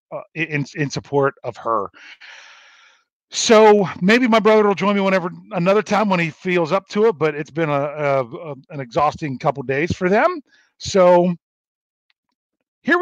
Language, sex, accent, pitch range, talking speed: English, male, American, 140-190 Hz, 165 wpm